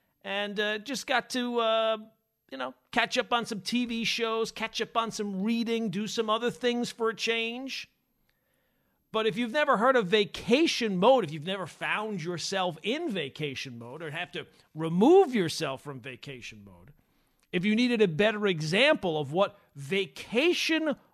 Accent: American